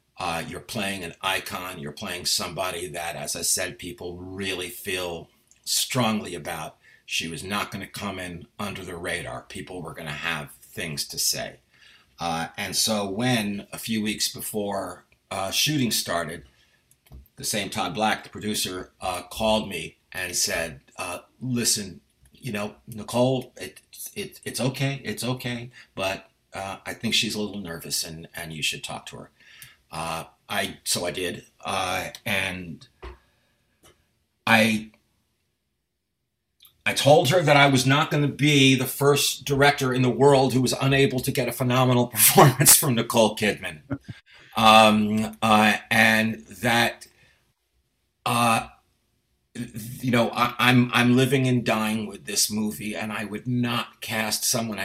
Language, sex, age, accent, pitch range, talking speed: English, male, 50-69, American, 95-125 Hz, 150 wpm